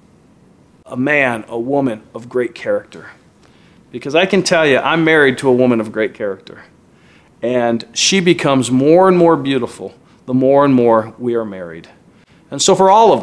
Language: English